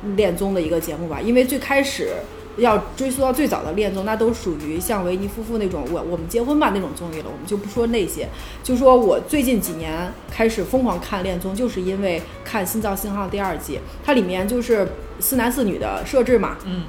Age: 30-49